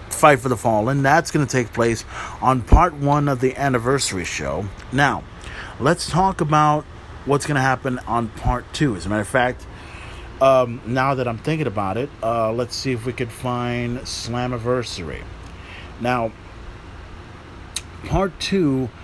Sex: male